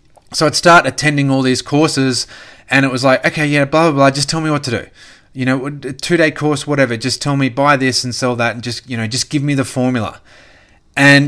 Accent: Australian